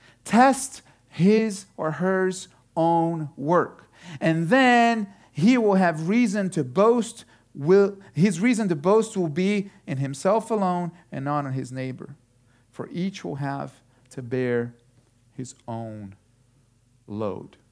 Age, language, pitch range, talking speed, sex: 40-59, English, 120-195 Hz, 130 wpm, male